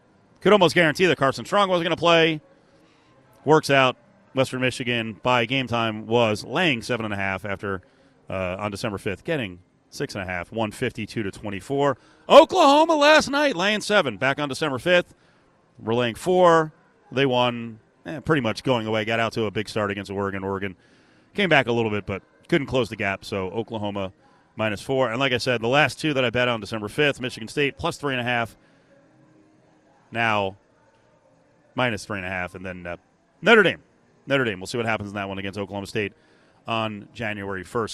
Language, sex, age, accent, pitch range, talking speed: English, male, 30-49, American, 110-150 Hz, 195 wpm